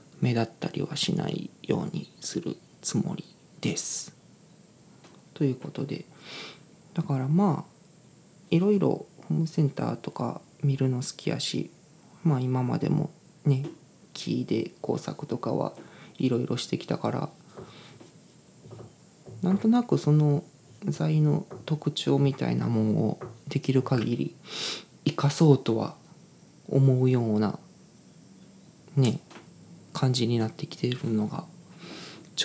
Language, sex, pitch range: Japanese, male, 130-160 Hz